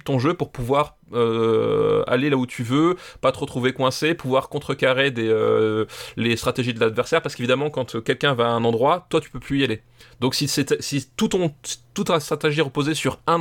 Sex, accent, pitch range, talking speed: male, French, 120-150 Hz, 215 wpm